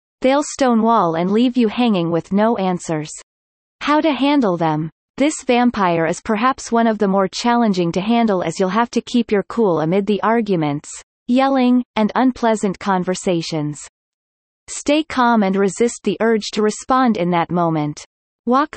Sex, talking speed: female, 160 wpm